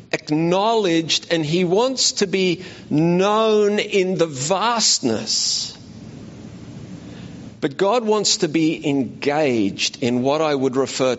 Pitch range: 140-205 Hz